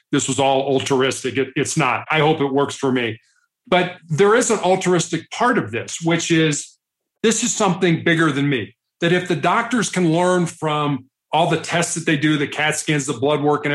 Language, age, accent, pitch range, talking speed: English, 40-59, American, 145-190 Hz, 210 wpm